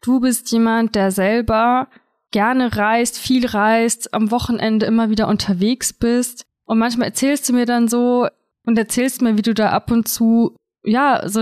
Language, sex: German, female